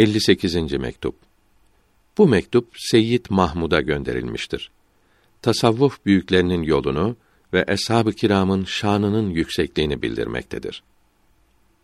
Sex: male